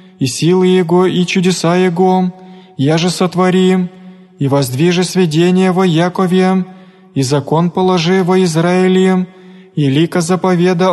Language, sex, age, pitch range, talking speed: Greek, male, 20-39, 180-190 Hz, 120 wpm